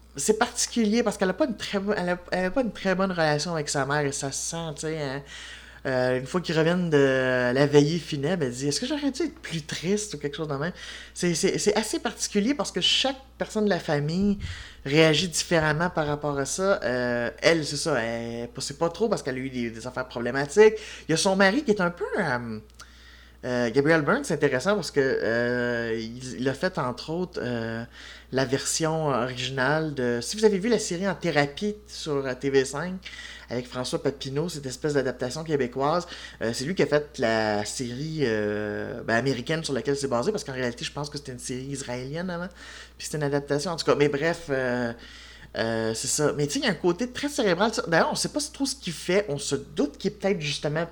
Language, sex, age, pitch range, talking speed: French, male, 20-39, 130-185 Hz, 230 wpm